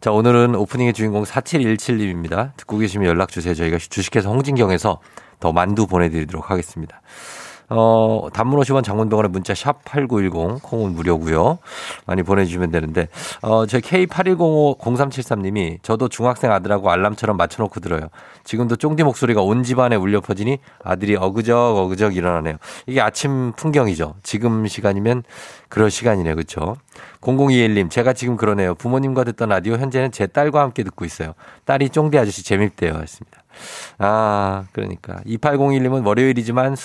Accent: native